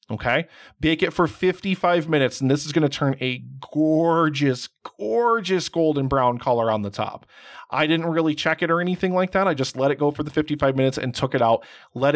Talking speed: 215 wpm